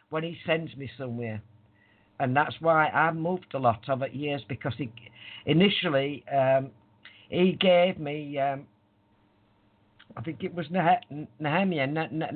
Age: 50-69